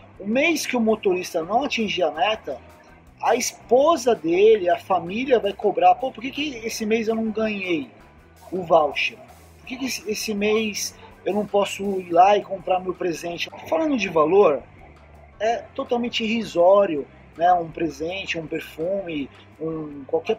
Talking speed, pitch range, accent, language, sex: 160 wpm, 180-230 Hz, Brazilian, Portuguese, male